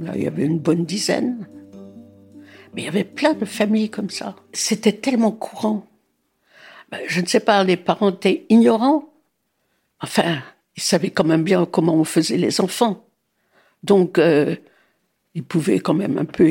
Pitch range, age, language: 165-220 Hz, 60-79, French